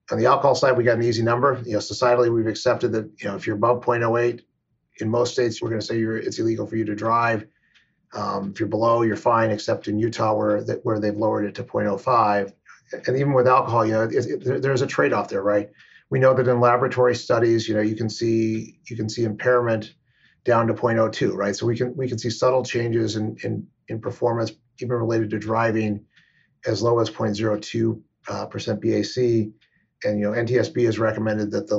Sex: male